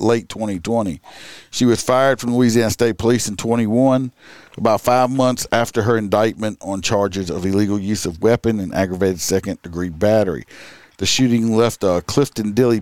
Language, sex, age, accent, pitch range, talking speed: English, male, 50-69, American, 100-120 Hz, 160 wpm